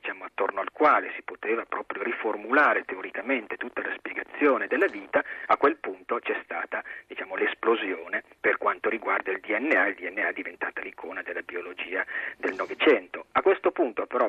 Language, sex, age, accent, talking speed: Italian, male, 40-59, native, 160 wpm